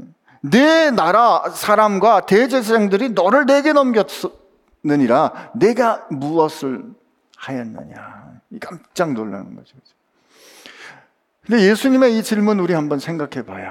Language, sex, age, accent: Korean, male, 50-69, native